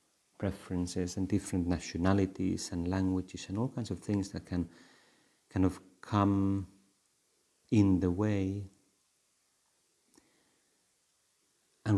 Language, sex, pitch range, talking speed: Finnish, male, 85-105 Hz, 100 wpm